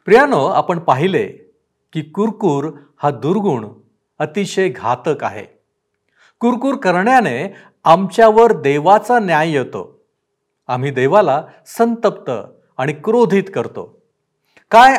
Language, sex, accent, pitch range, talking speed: Marathi, male, native, 135-215 Hz, 90 wpm